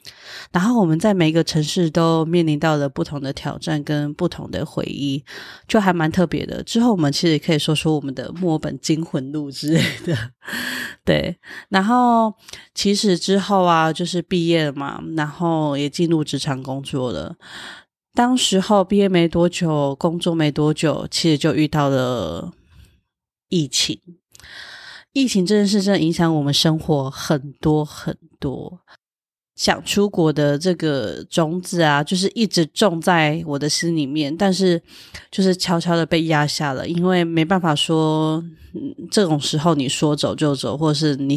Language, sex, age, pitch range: Chinese, female, 30-49, 150-180 Hz